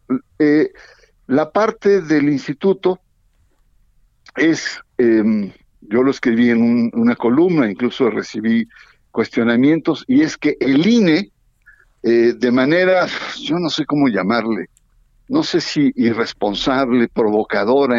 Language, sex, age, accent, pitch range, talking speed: Spanish, male, 60-79, Mexican, 115-155 Hz, 115 wpm